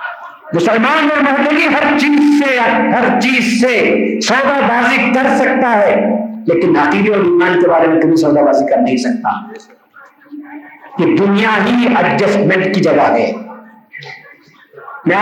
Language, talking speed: Urdu, 135 wpm